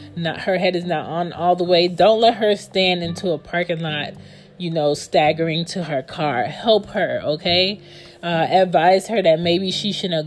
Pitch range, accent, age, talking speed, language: 165-205 Hz, American, 30-49, 195 wpm, English